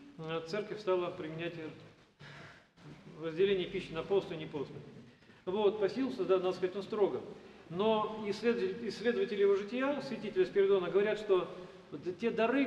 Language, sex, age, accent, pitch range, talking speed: Russian, male, 40-59, native, 175-205 Hz, 125 wpm